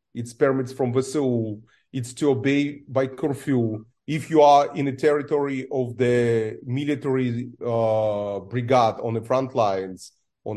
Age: 30-49